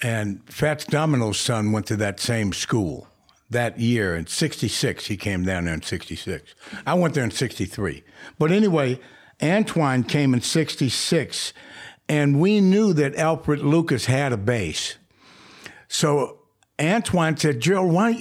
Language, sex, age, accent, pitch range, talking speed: English, male, 60-79, American, 120-170 Hz, 150 wpm